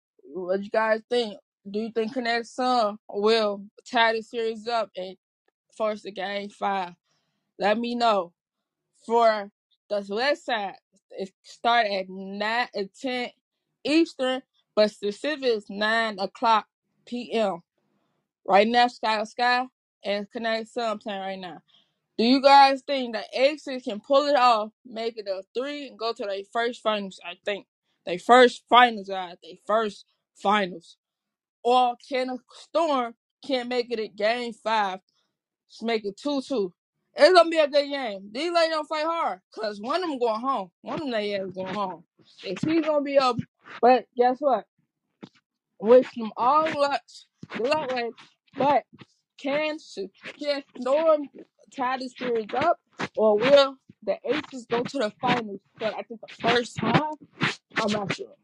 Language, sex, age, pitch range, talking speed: English, female, 20-39, 200-255 Hz, 160 wpm